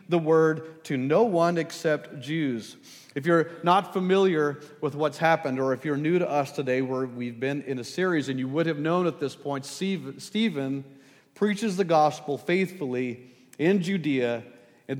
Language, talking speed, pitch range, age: English, 175 wpm, 130-165 Hz, 40-59